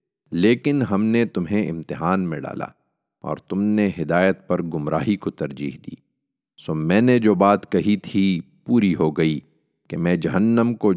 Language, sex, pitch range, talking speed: Urdu, male, 80-105 Hz, 165 wpm